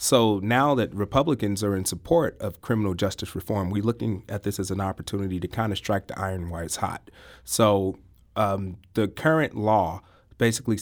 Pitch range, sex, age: 95-115 Hz, male, 30-49